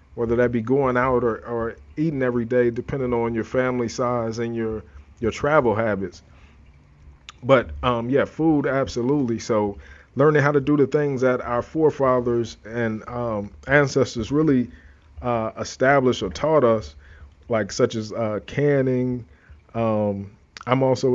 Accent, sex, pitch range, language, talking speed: American, male, 110-135 Hz, English, 150 wpm